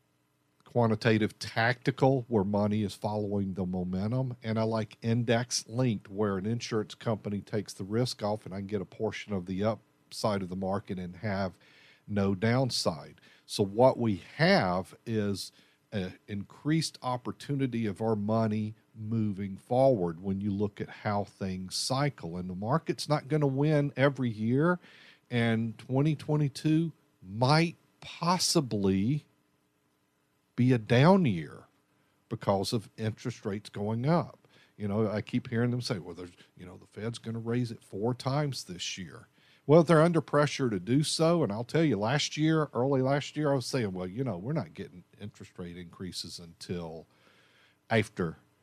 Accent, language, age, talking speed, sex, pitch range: American, English, 50-69, 160 wpm, male, 100-140 Hz